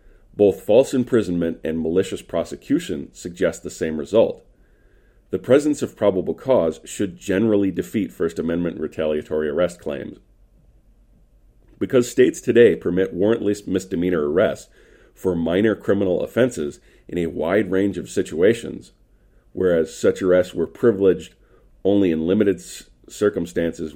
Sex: male